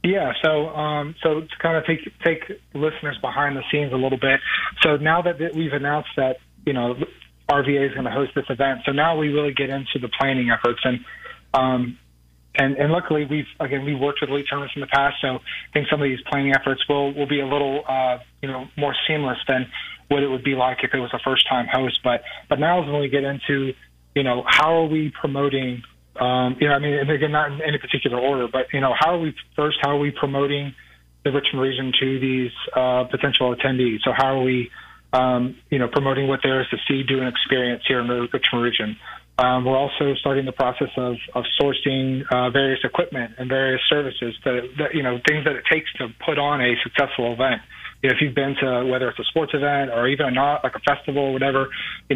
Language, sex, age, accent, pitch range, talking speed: English, male, 30-49, American, 130-145 Hz, 230 wpm